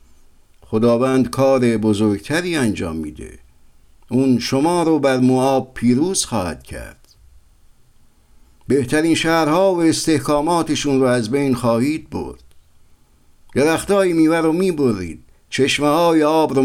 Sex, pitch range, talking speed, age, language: male, 100-150 Hz, 110 wpm, 60-79, Persian